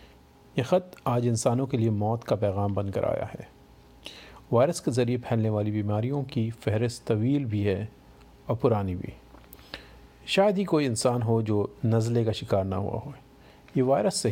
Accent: native